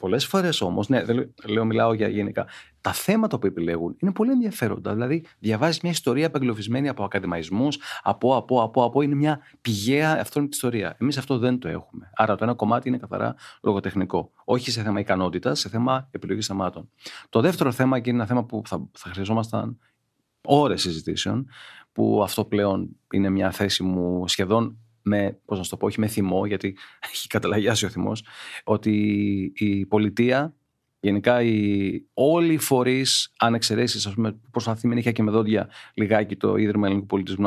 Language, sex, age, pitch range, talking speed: Greek, male, 40-59, 100-125 Hz, 165 wpm